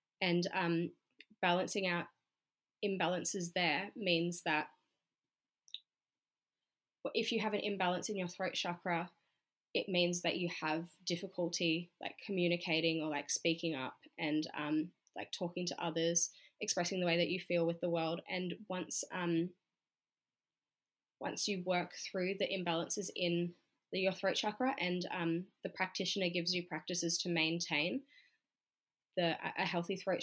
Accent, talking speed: Australian, 140 wpm